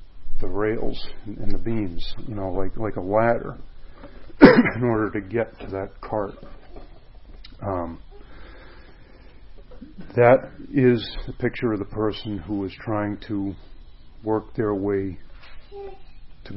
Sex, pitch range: male, 95-110 Hz